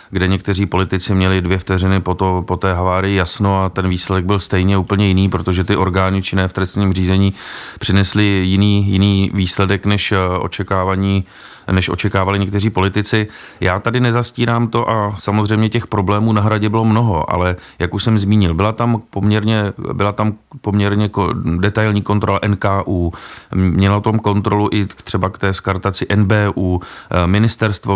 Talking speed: 155 wpm